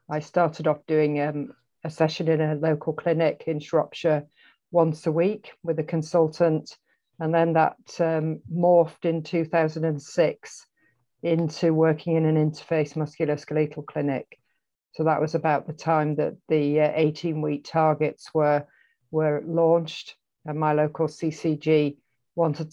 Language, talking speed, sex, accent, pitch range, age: English, 135 wpm, female, British, 150-165 Hz, 50-69